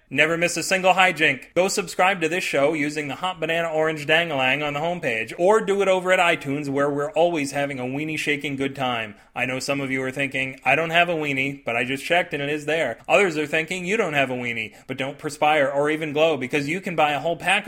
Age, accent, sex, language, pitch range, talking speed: 30-49, American, male, English, 130-165 Hz, 255 wpm